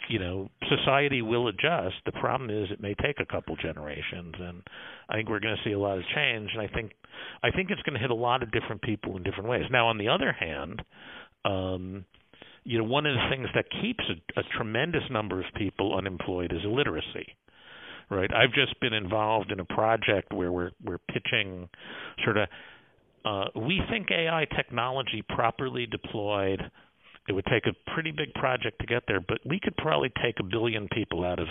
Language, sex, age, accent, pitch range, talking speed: English, male, 50-69, American, 95-130 Hz, 200 wpm